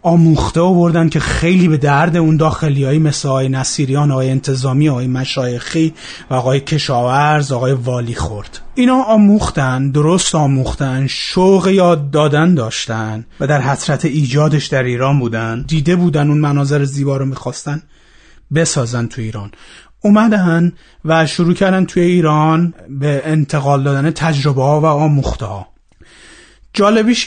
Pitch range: 130-175 Hz